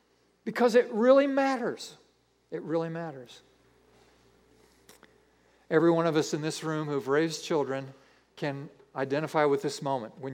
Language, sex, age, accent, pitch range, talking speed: English, male, 50-69, American, 130-170 Hz, 135 wpm